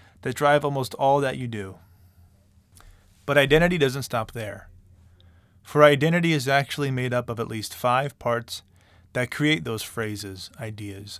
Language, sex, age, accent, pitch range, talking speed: English, male, 20-39, American, 90-130 Hz, 150 wpm